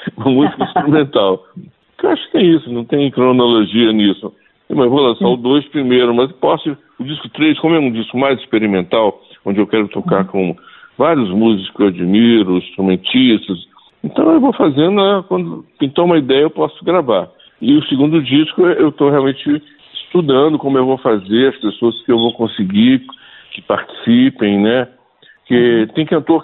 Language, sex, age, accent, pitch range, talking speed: Portuguese, male, 60-79, Brazilian, 110-155 Hz, 170 wpm